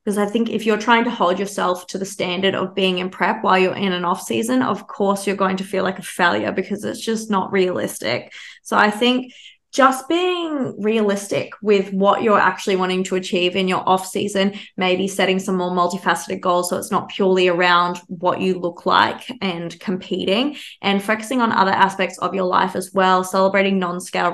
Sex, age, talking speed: female, 20-39, 200 wpm